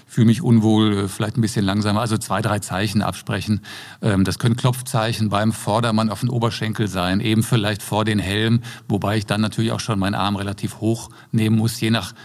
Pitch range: 100-120 Hz